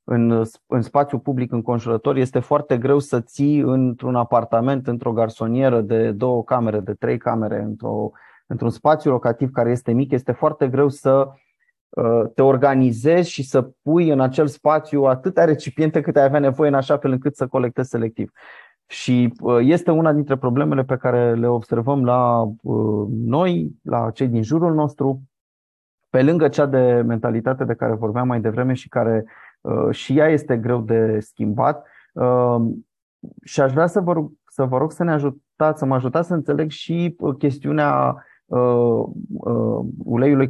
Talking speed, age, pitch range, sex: 160 wpm, 30-49, 115-145 Hz, male